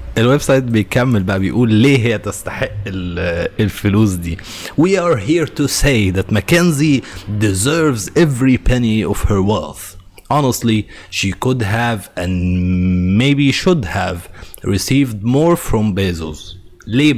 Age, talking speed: 30-49, 125 wpm